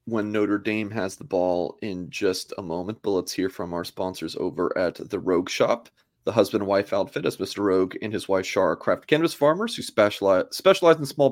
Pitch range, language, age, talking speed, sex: 100-145 Hz, English, 30-49, 215 wpm, male